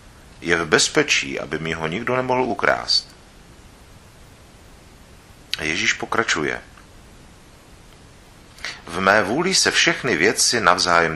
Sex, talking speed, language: male, 95 wpm, Czech